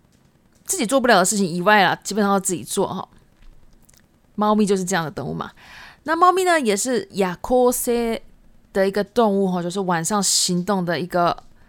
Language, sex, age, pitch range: Japanese, female, 20-39, 185-245 Hz